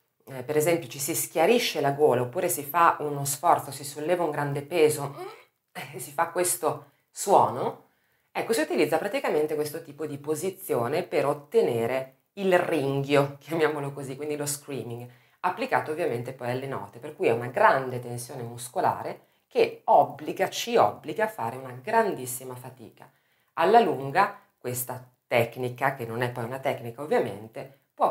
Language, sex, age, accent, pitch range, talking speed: Italian, female, 30-49, native, 125-165 Hz, 150 wpm